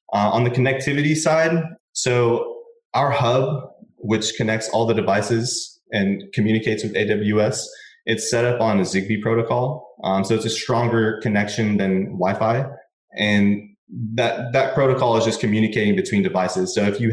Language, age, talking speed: English, 20-39, 155 wpm